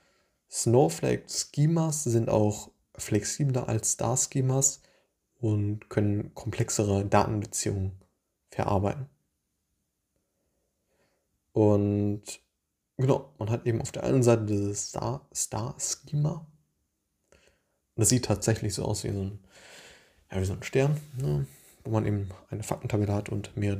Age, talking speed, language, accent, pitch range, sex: 20-39, 110 wpm, German, German, 100-115 Hz, male